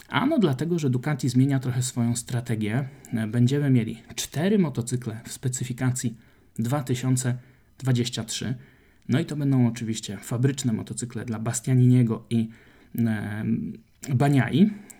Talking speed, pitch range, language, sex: 105 wpm, 115-135 Hz, Polish, male